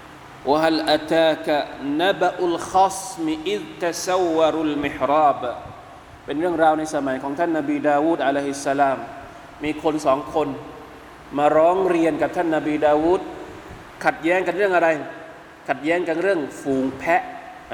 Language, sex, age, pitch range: Thai, male, 20-39, 150-195 Hz